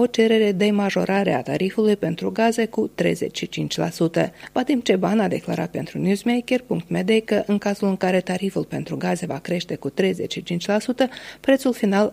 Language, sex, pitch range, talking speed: Romanian, female, 165-225 Hz, 150 wpm